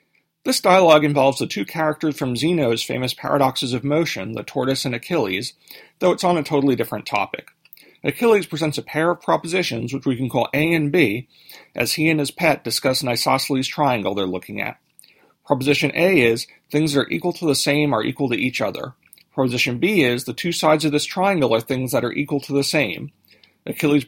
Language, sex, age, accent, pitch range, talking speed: English, male, 40-59, American, 130-160 Hz, 200 wpm